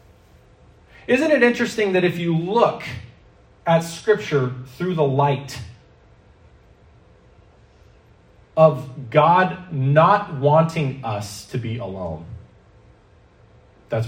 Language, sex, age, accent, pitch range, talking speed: English, male, 30-49, American, 105-170 Hz, 90 wpm